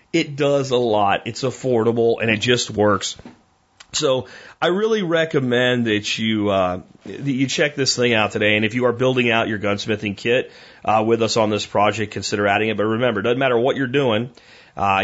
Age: 30-49